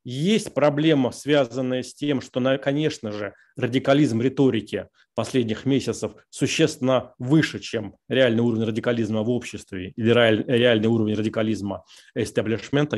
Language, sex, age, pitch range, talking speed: Russian, male, 20-39, 110-135 Hz, 115 wpm